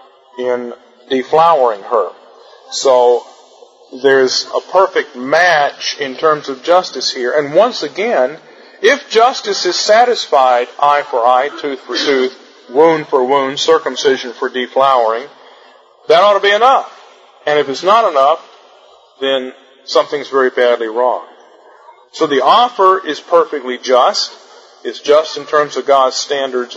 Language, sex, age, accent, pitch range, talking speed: English, male, 40-59, American, 130-165 Hz, 135 wpm